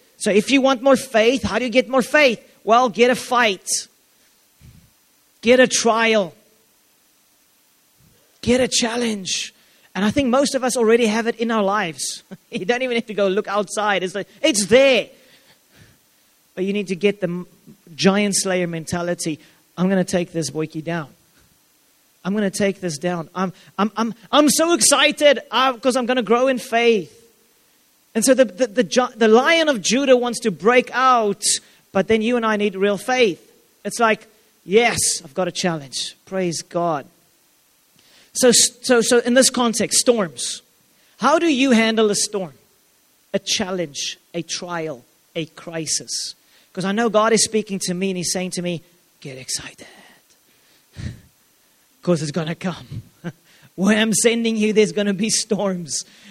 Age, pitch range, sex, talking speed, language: 30-49, 180-240 Hz, male, 170 wpm, English